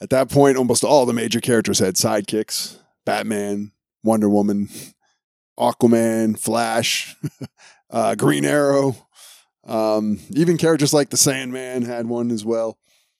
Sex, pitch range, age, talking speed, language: male, 115-150 Hz, 20-39, 125 wpm, English